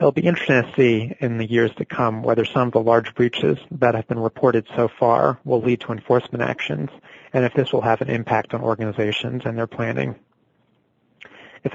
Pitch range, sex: 110-130 Hz, male